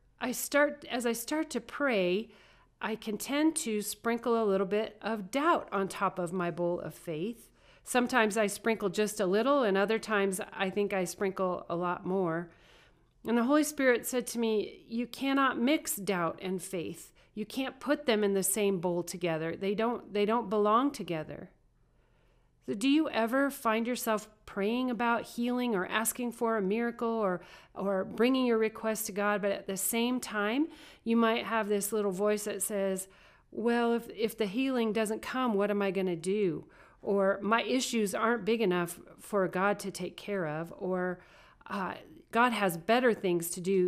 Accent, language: American, English